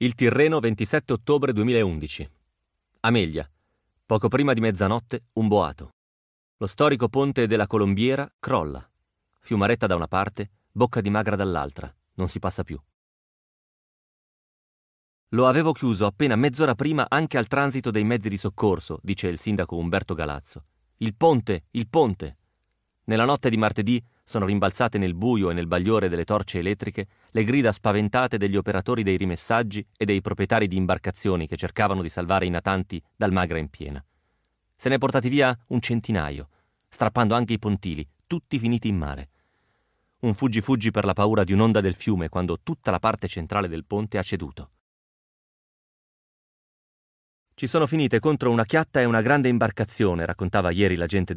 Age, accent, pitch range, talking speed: 40-59, native, 90-120 Hz, 160 wpm